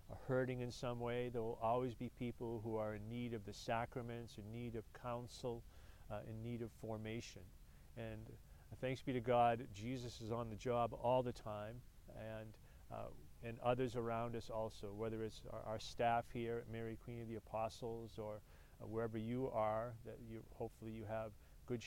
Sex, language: male, English